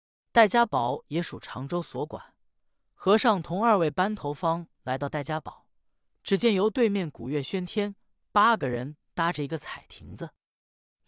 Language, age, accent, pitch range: Chinese, 20-39, native, 135-200 Hz